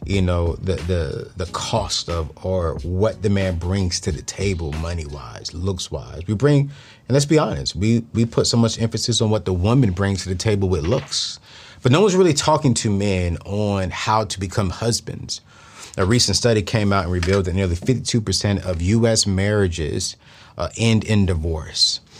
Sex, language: male, English